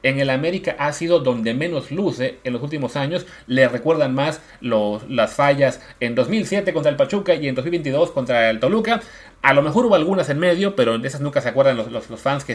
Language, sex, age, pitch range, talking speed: Spanish, male, 30-49, 115-175 Hz, 225 wpm